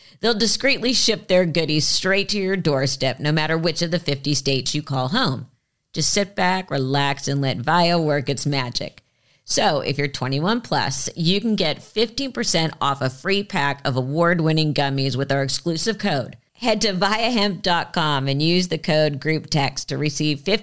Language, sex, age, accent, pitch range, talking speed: English, female, 50-69, American, 140-175 Hz, 175 wpm